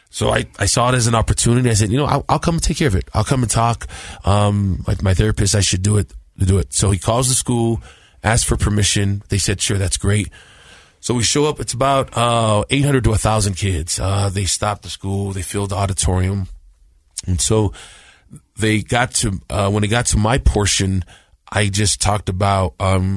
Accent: American